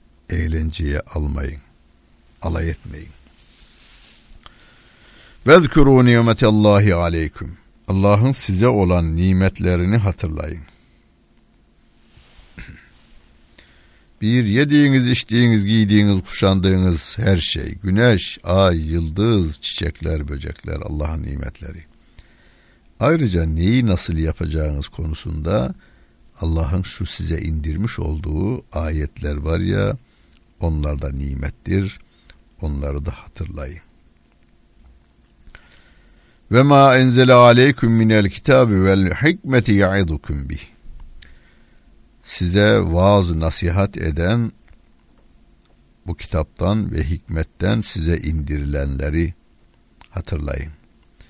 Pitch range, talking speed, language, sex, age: 80-105 Hz, 75 wpm, Turkish, male, 60-79